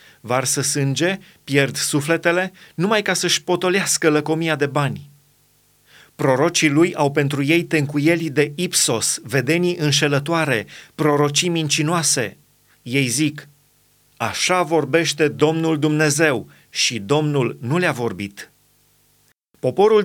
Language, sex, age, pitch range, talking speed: Romanian, male, 30-49, 145-175 Hz, 105 wpm